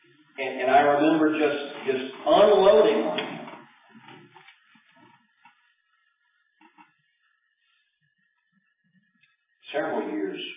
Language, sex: English, male